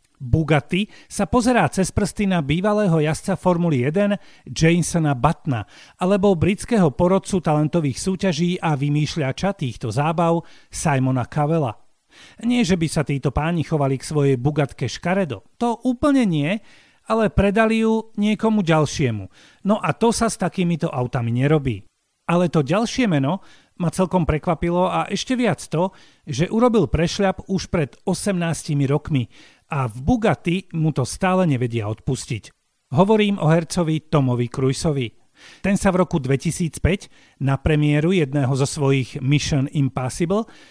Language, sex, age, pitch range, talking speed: Slovak, male, 40-59, 140-195 Hz, 135 wpm